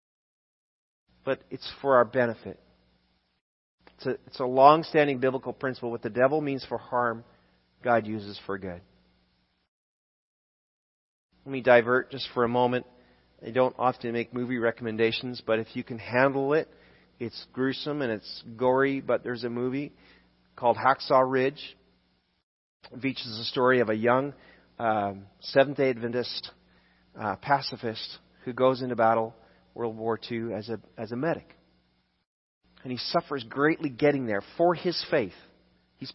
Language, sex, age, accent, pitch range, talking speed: English, male, 40-59, American, 100-140 Hz, 145 wpm